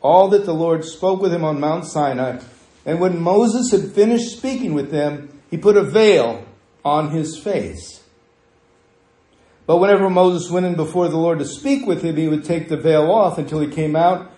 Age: 50-69